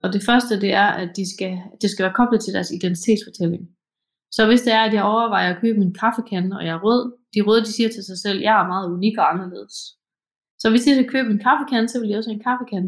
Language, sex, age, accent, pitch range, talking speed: Danish, female, 30-49, native, 185-230 Hz, 270 wpm